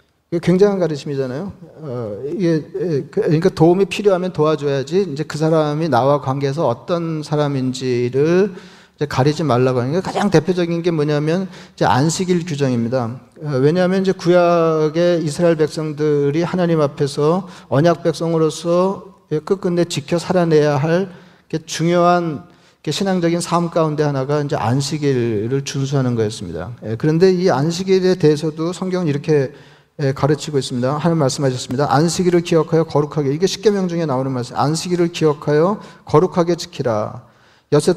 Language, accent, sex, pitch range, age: Korean, native, male, 140-170 Hz, 40-59